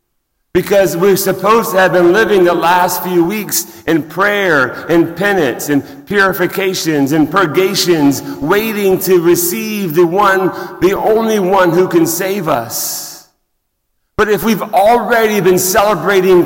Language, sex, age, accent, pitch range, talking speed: English, male, 40-59, American, 170-200 Hz, 135 wpm